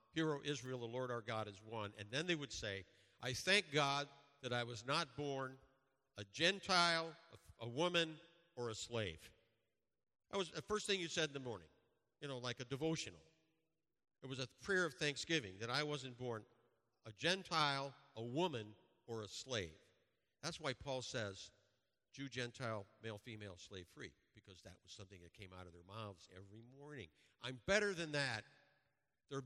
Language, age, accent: English, 50-69, American